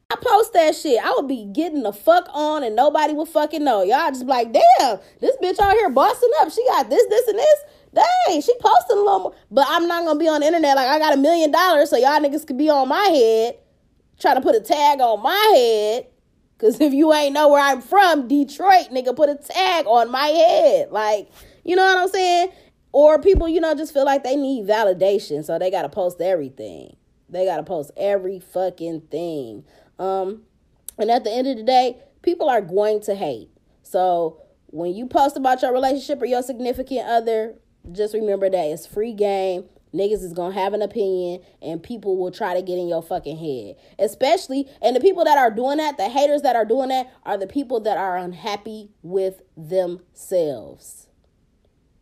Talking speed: 205 wpm